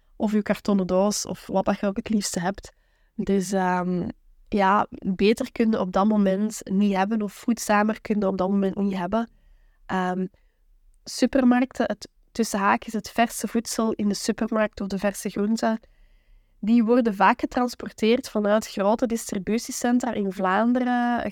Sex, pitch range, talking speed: female, 195-230 Hz, 150 wpm